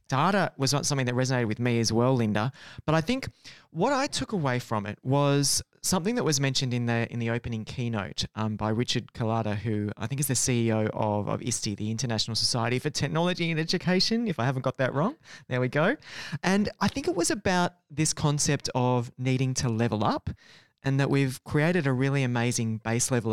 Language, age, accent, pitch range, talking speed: English, 30-49, Australian, 115-145 Hz, 210 wpm